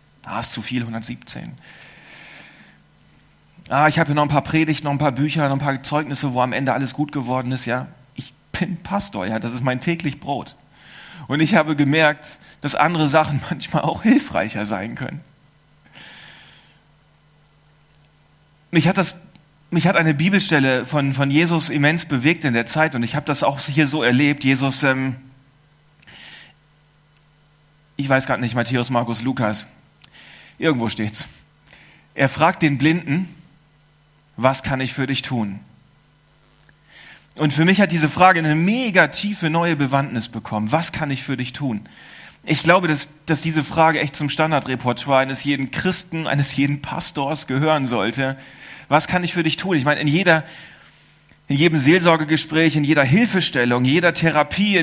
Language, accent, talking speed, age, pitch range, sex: German, German, 160 wpm, 40-59, 135-160 Hz, male